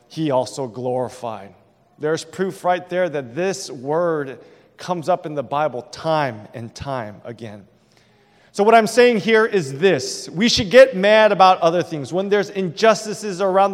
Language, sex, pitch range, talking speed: English, male, 140-190 Hz, 160 wpm